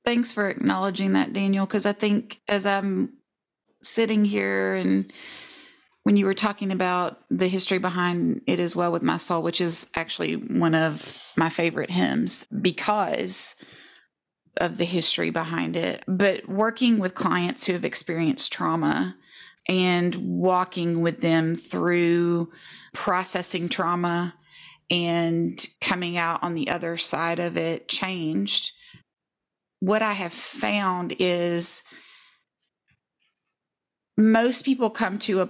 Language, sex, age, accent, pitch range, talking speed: English, female, 30-49, American, 170-210 Hz, 130 wpm